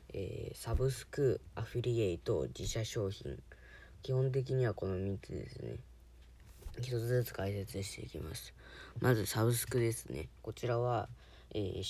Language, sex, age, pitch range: Japanese, female, 20-39, 95-115 Hz